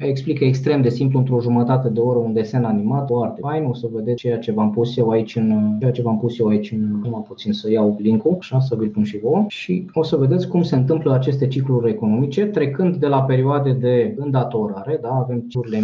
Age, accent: 20-39, native